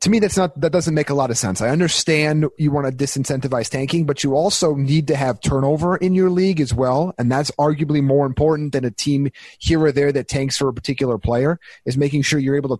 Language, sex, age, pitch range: English, male, 30-49, 130-160 Hz